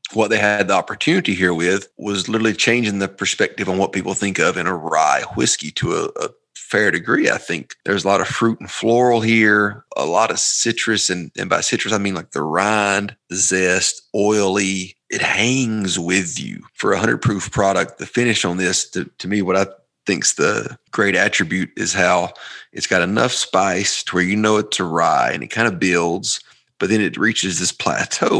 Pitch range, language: 95-110 Hz, English